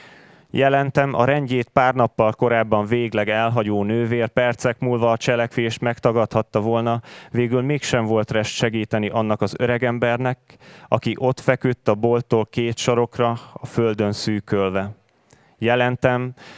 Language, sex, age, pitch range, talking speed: Hungarian, male, 20-39, 110-125 Hz, 125 wpm